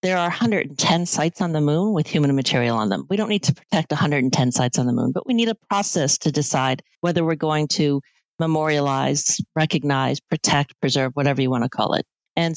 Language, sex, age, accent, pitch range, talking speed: English, female, 40-59, American, 150-190 Hz, 210 wpm